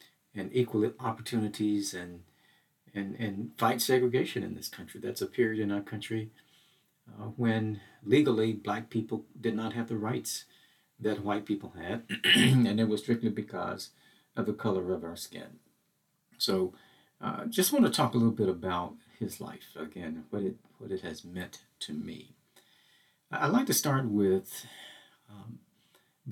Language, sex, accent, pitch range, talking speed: English, male, American, 95-120 Hz, 160 wpm